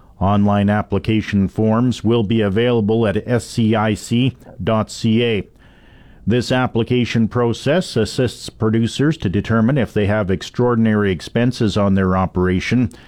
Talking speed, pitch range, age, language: 105 wpm, 100-120 Hz, 50-69, English